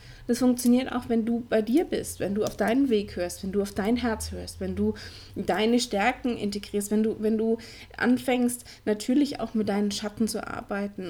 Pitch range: 195-240 Hz